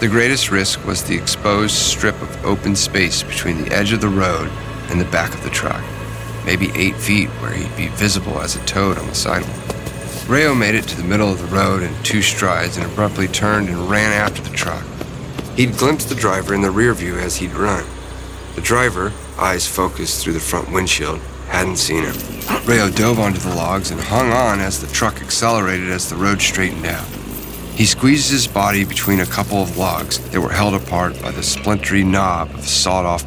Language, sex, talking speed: English, male, 205 wpm